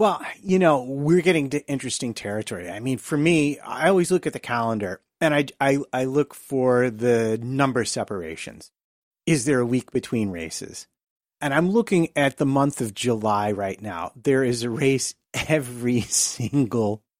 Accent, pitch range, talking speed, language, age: American, 120-155 Hz, 170 wpm, English, 30-49